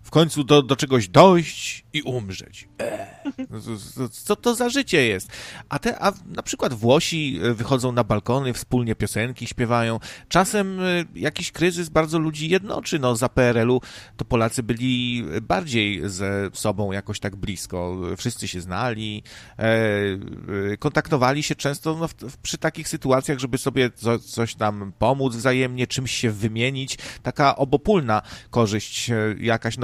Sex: male